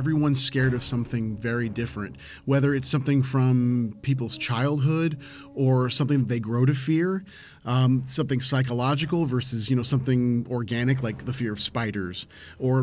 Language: English